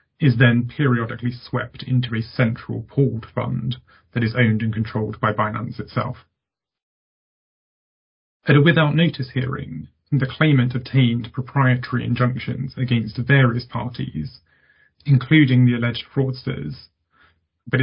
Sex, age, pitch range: male, 30-49, 120-130 Hz